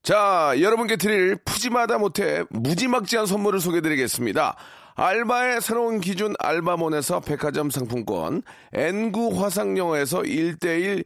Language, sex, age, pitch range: Korean, male, 40-59, 160-220 Hz